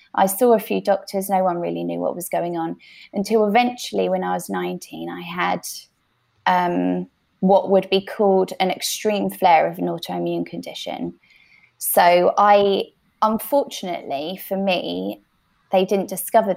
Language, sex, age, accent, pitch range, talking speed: English, female, 20-39, British, 170-205 Hz, 150 wpm